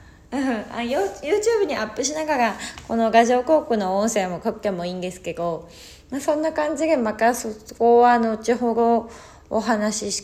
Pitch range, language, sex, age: 195-245 Hz, Japanese, female, 20-39